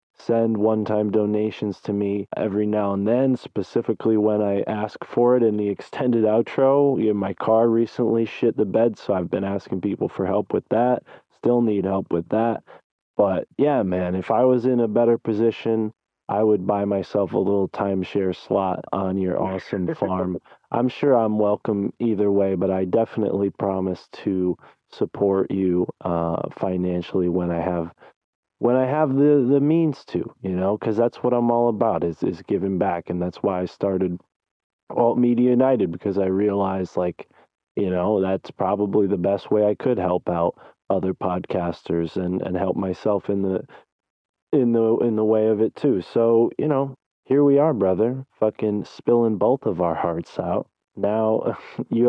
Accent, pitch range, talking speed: American, 95-115 Hz, 175 wpm